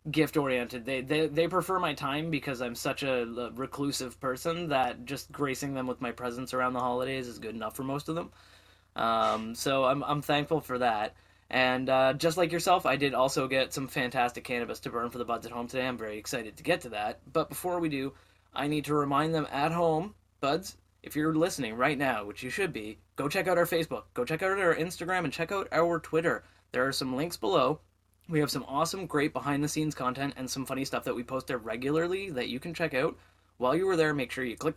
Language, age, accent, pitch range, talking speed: English, 20-39, American, 125-155 Hz, 235 wpm